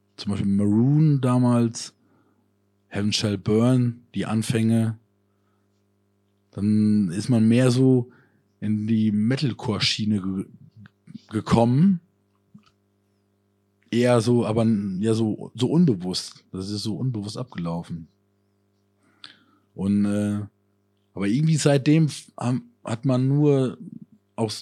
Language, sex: German, male